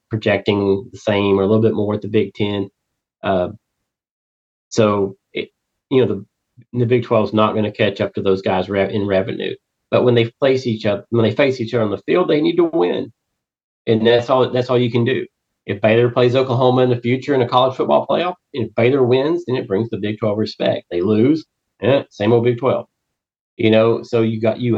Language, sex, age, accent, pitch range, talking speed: English, male, 40-59, American, 105-120 Hz, 220 wpm